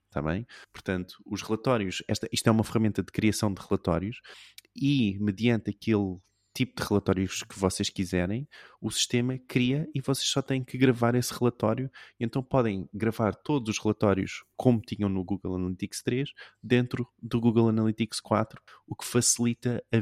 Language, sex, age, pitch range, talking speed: Portuguese, male, 20-39, 95-115 Hz, 165 wpm